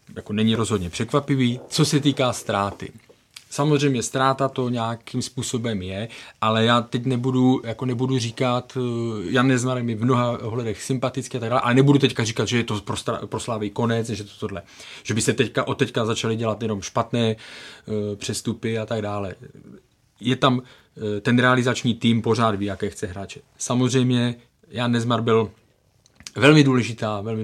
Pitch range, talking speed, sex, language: 110-125 Hz, 165 wpm, male, Czech